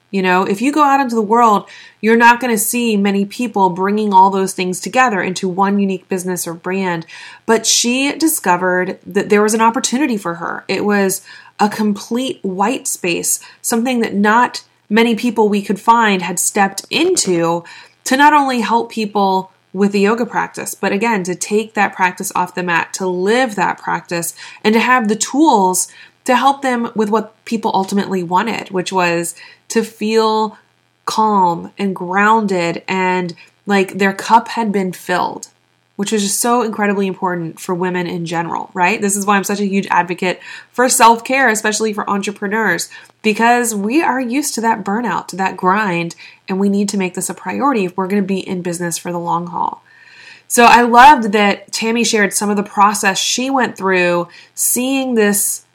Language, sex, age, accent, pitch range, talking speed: English, female, 20-39, American, 190-230 Hz, 185 wpm